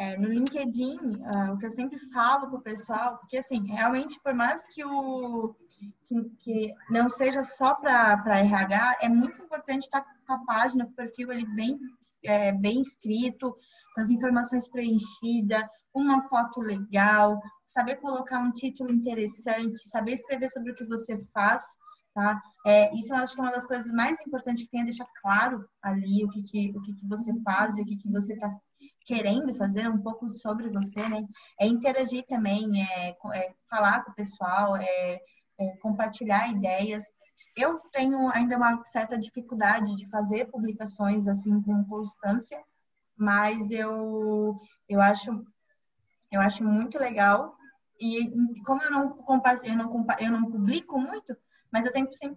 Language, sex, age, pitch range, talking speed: Portuguese, female, 20-39, 210-255 Hz, 170 wpm